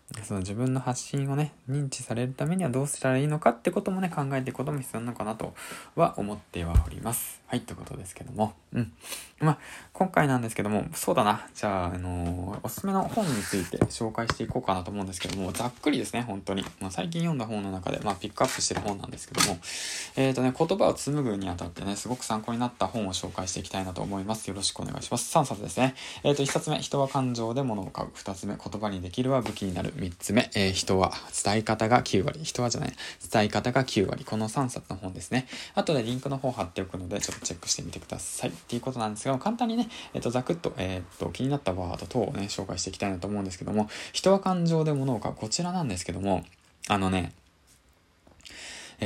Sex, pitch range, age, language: male, 95-135 Hz, 20-39, Japanese